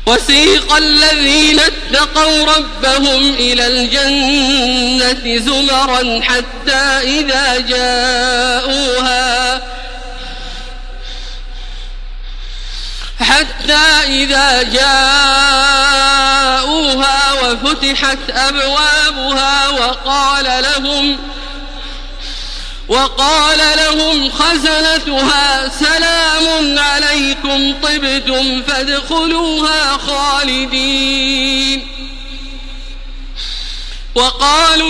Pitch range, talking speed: 265-300 Hz, 45 wpm